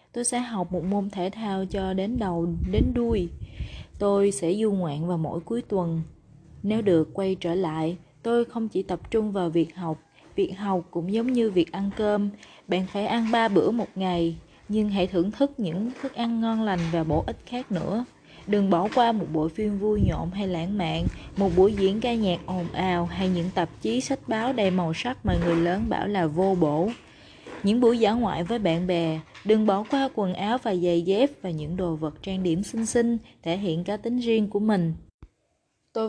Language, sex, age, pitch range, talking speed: Vietnamese, female, 20-39, 170-220 Hz, 210 wpm